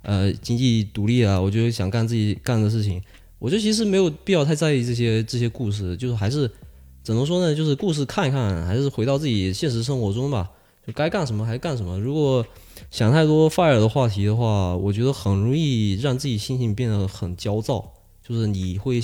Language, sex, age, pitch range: Chinese, male, 20-39, 100-135 Hz